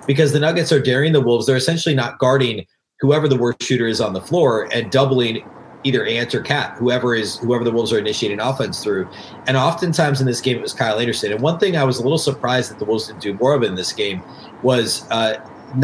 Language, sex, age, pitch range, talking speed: English, male, 30-49, 125-155 Hz, 240 wpm